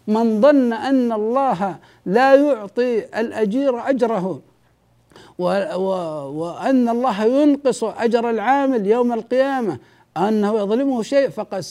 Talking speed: 95 wpm